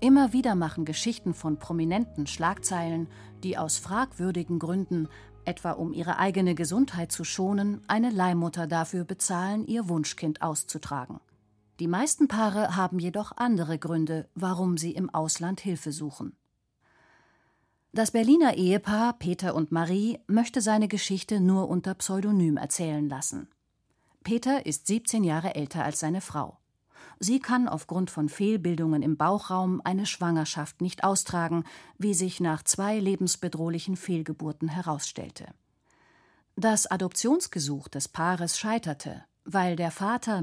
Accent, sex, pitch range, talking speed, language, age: German, female, 160-205 Hz, 130 wpm, German, 40-59